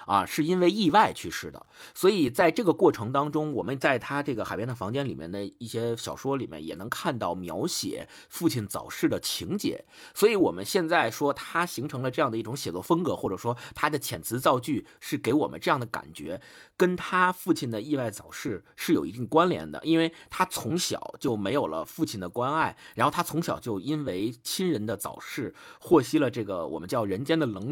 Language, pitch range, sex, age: Chinese, 115-165 Hz, male, 50-69